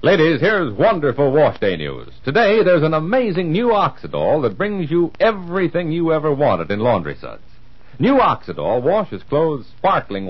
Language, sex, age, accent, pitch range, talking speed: English, male, 60-79, American, 115-170 Hz, 155 wpm